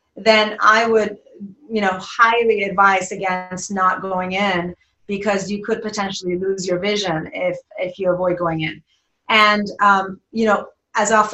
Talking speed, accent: 160 wpm, American